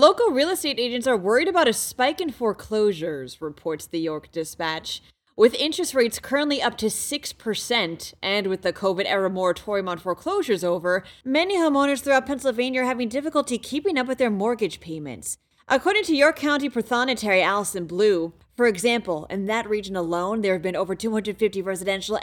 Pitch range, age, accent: 180-255 Hz, 30-49, American